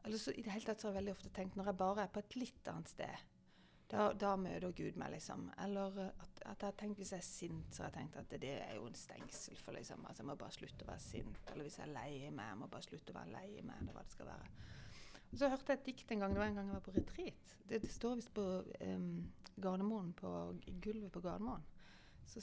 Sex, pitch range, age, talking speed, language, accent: female, 185-235 Hz, 30-49, 265 wpm, English, Swedish